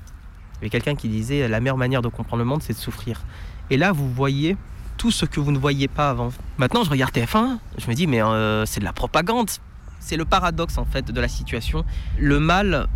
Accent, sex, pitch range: French, male, 110-155 Hz